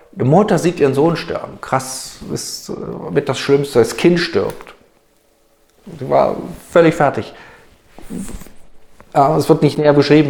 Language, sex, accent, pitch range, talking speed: German, male, German, 95-130 Hz, 135 wpm